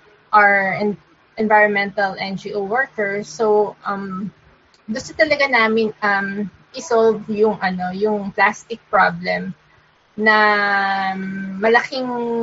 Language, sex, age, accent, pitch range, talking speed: Filipino, female, 20-39, native, 200-240 Hz, 85 wpm